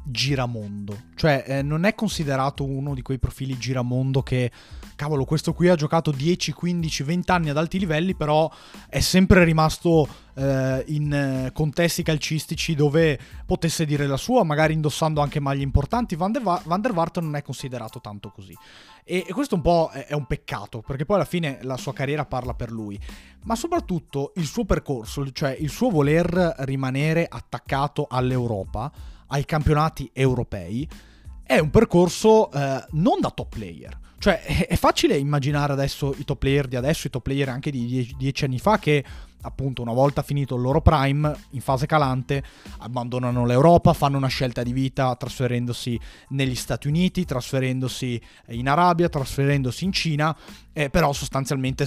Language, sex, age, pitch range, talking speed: Italian, male, 30-49, 130-160 Hz, 165 wpm